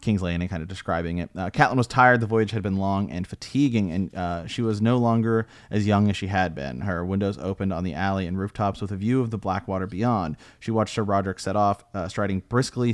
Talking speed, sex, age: 255 wpm, male, 30-49